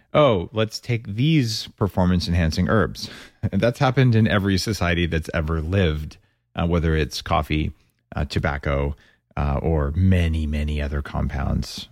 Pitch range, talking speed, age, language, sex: 80-115 Hz, 135 wpm, 30-49, English, male